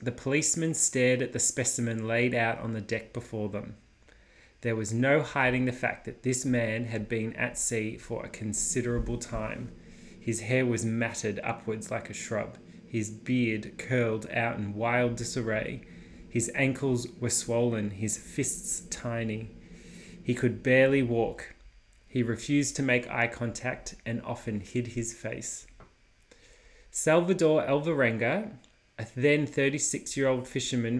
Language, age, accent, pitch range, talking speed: English, 20-39, Australian, 115-130 Hz, 140 wpm